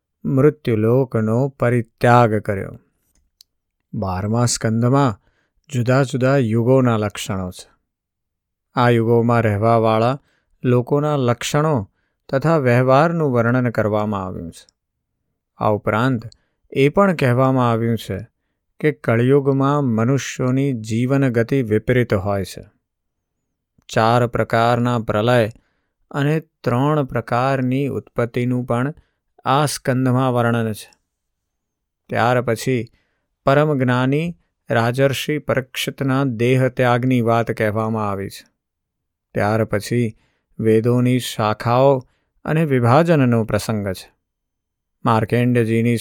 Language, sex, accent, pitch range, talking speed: Gujarati, male, native, 110-130 Hz, 90 wpm